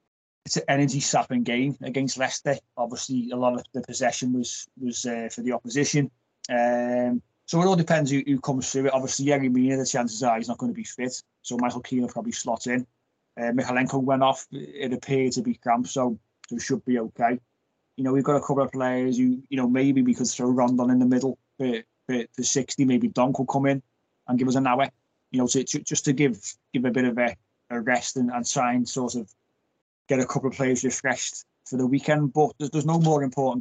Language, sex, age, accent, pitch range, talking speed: English, male, 20-39, British, 120-140 Hz, 230 wpm